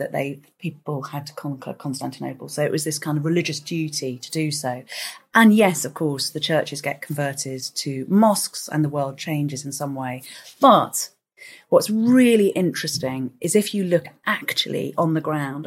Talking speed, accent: 180 wpm, British